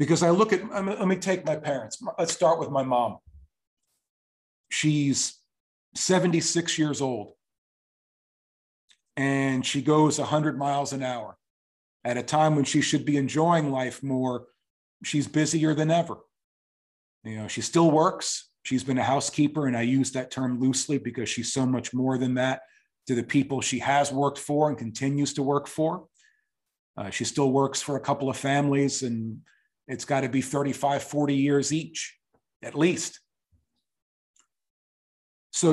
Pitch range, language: 130-150 Hz, English